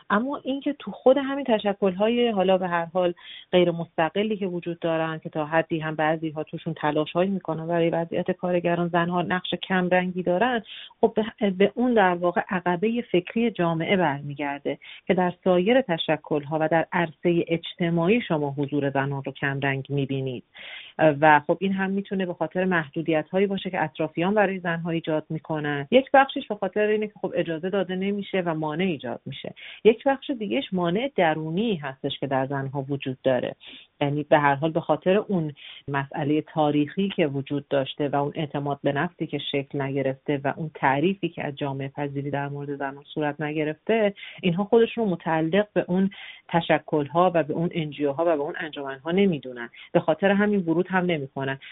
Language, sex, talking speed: Persian, female, 175 wpm